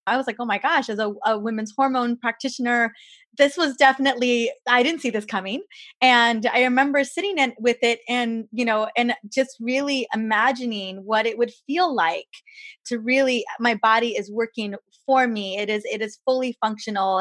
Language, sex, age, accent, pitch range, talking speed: English, female, 20-39, American, 215-265 Hz, 180 wpm